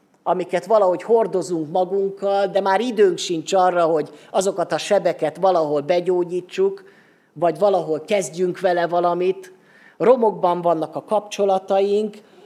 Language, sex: Hungarian, male